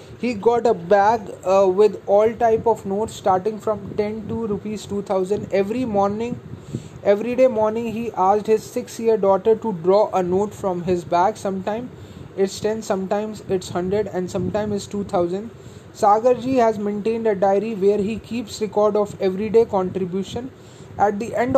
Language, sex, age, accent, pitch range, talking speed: Hindi, male, 20-39, native, 195-230 Hz, 180 wpm